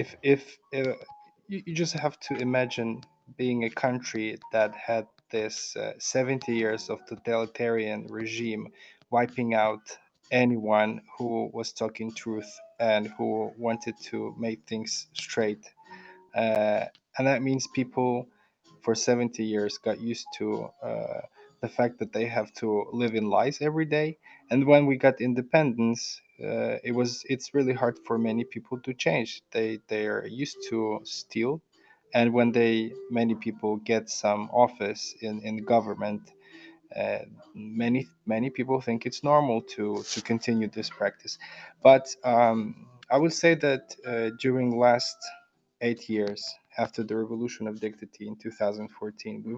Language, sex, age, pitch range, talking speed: English, male, 20-39, 110-135 Hz, 145 wpm